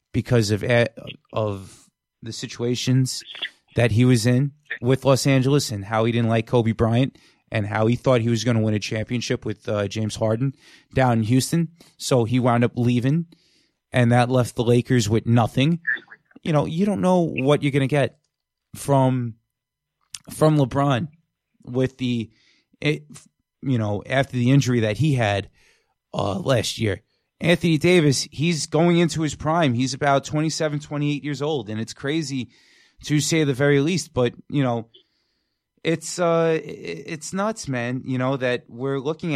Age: 30-49